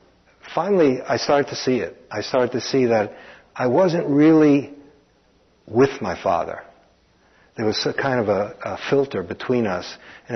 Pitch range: 110-145 Hz